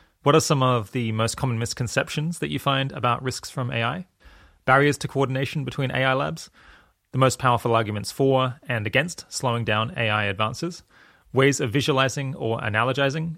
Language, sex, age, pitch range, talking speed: English, male, 30-49, 110-140 Hz, 165 wpm